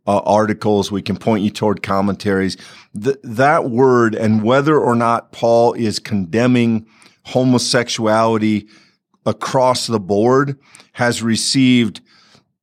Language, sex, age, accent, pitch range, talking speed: English, male, 50-69, American, 105-130 Hz, 110 wpm